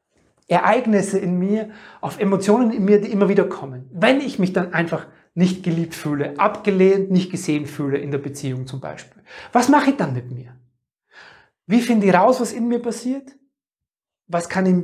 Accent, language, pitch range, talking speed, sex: German, German, 160-200 Hz, 180 wpm, male